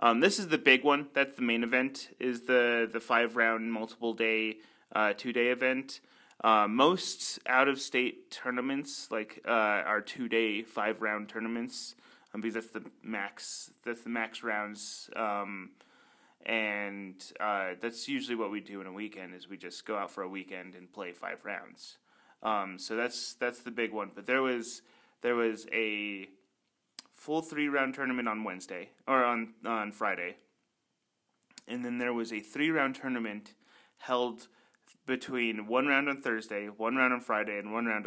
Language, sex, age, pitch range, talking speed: English, male, 30-49, 105-125 Hz, 175 wpm